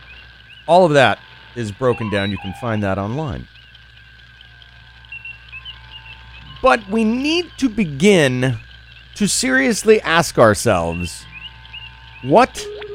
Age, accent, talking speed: 40-59, American, 95 wpm